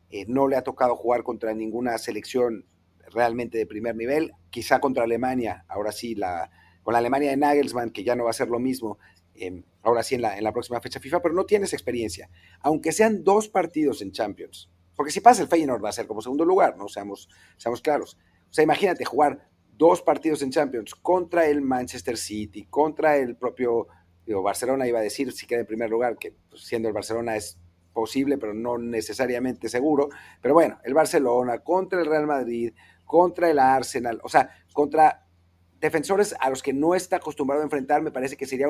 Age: 40-59